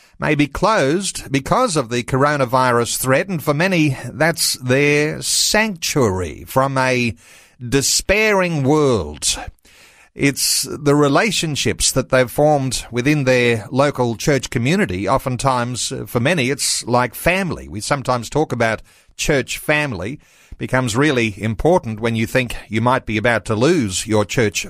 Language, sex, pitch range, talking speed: English, male, 115-150 Hz, 135 wpm